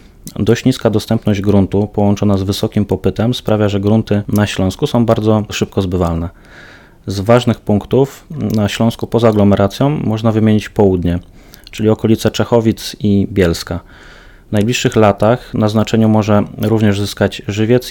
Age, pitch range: 30-49, 95-110 Hz